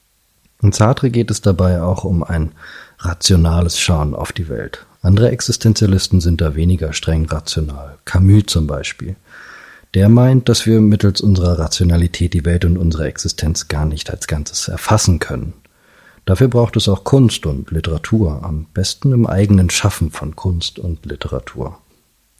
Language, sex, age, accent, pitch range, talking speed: German, male, 40-59, German, 80-100 Hz, 155 wpm